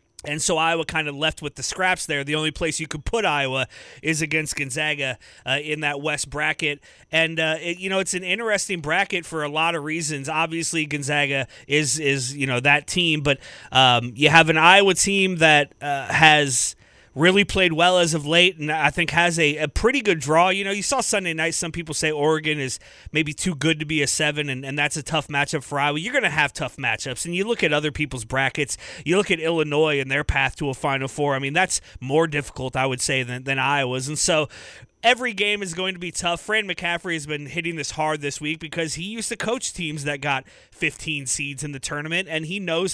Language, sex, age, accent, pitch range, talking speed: English, male, 30-49, American, 145-175 Hz, 235 wpm